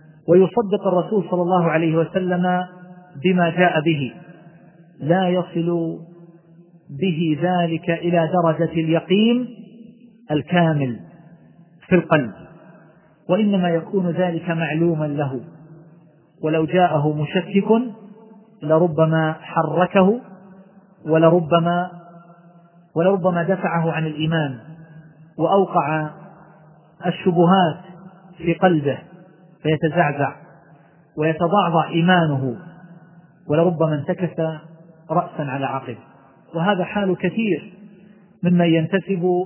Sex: male